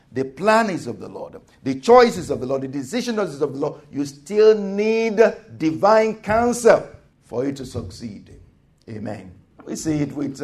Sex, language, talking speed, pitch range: male, English, 185 wpm, 130-200 Hz